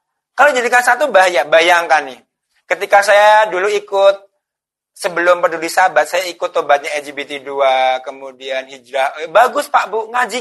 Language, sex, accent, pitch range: Indonesian, male, native, 140-210 Hz